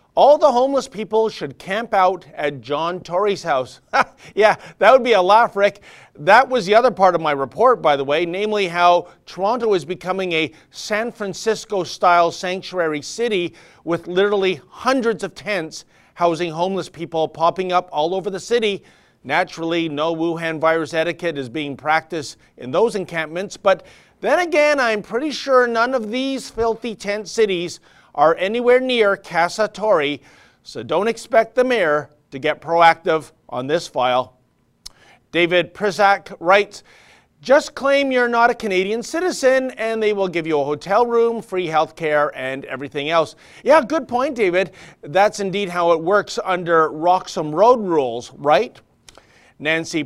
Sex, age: male, 40-59